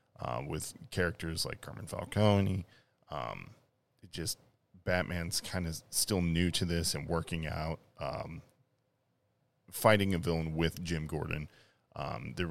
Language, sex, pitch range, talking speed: English, male, 80-95 Hz, 135 wpm